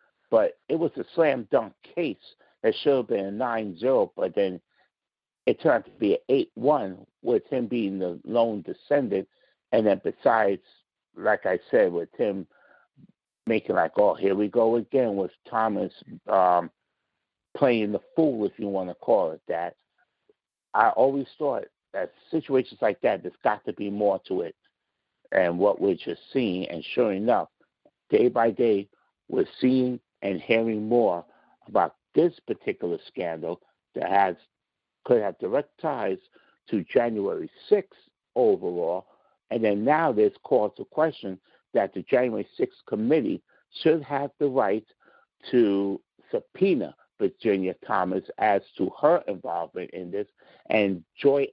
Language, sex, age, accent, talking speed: English, male, 60-79, American, 150 wpm